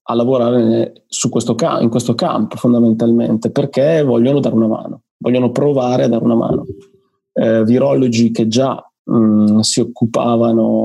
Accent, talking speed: native, 150 wpm